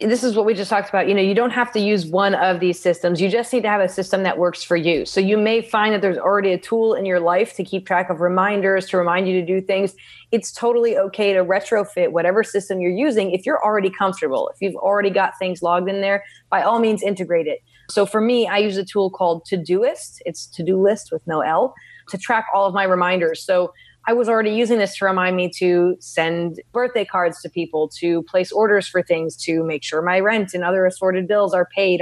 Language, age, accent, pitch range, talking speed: English, 20-39, American, 175-210 Hz, 245 wpm